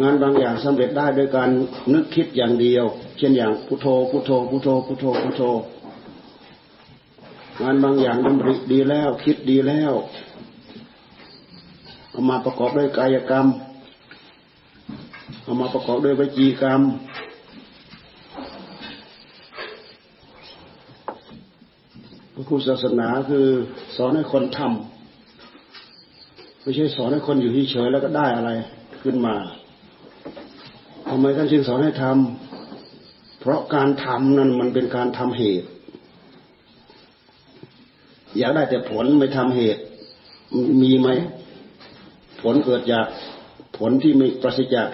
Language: Thai